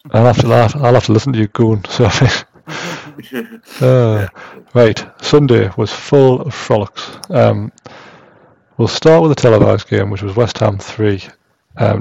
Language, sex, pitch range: English, male, 100-120 Hz